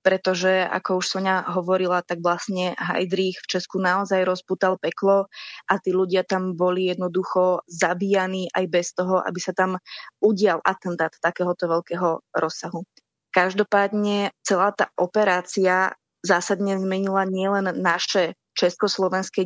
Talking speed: 125 wpm